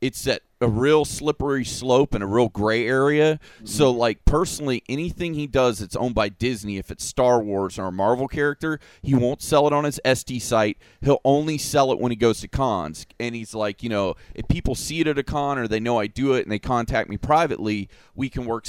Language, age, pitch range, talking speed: English, 30-49, 110-135 Hz, 230 wpm